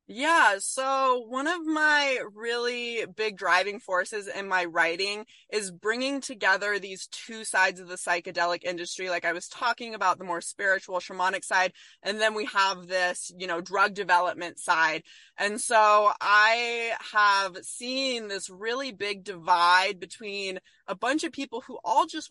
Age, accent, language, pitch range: 20-39, American, English, 185-225 Hz